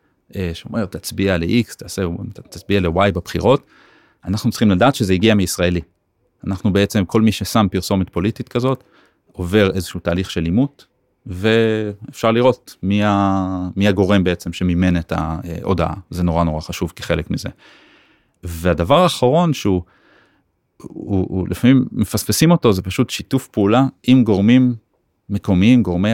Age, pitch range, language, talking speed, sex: 30-49, 90-110 Hz, Hebrew, 130 wpm, male